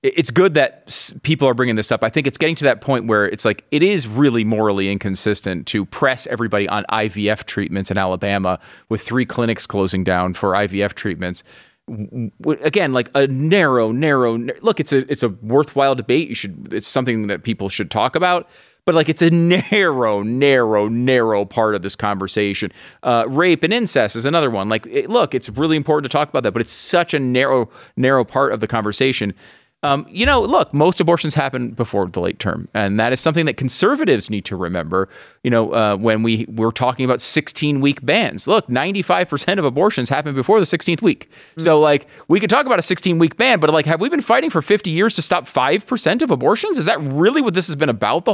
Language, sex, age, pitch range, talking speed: English, male, 30-49, 110-160 Hz, 210 wpm